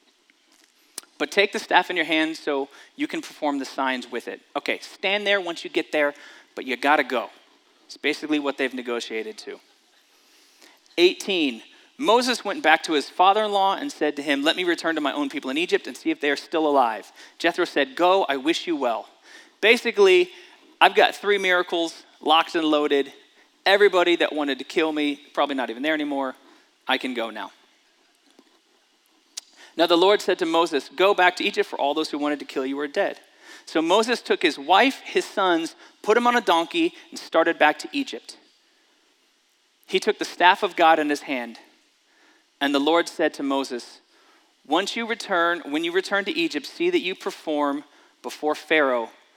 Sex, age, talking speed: male, 40-59, 190 wpm